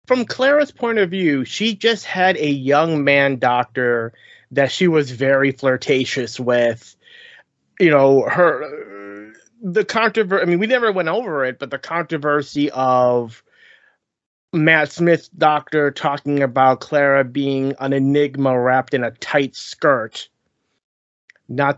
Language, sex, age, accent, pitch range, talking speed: English, male, 30-49, American, 125-160 Hz, 135 wpm